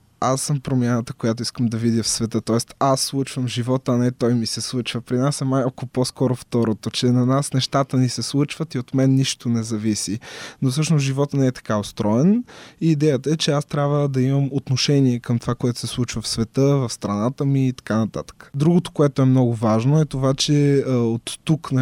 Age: 20-39